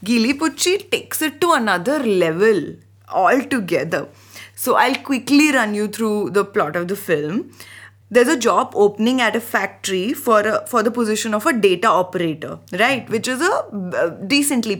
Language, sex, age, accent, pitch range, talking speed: English, female, 20-39, Indian, 190-245 Hz, 155 wpm